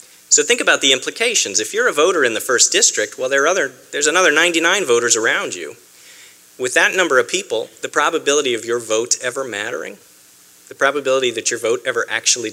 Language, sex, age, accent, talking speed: English, male, 40-59, American, 185 wpm